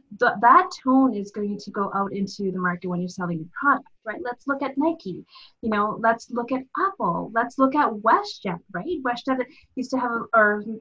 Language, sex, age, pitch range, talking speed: English, female, 30-49, 215-265 Hz, 200 wpm